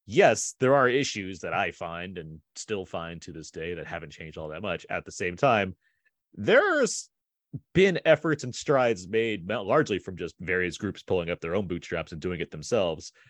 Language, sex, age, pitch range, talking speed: English, male, 30-49, 85-100 Hz, 195 wpm